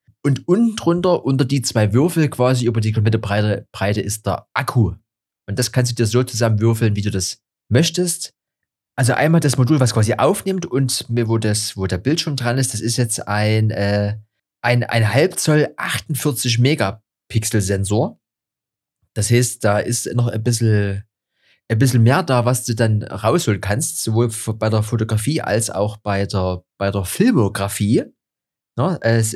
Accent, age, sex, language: German, 30-49, male, German